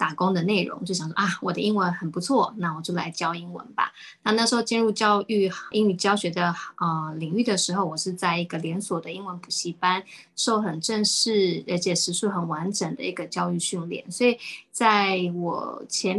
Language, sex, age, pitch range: Chinese, female, 10-29, 175-205 Hz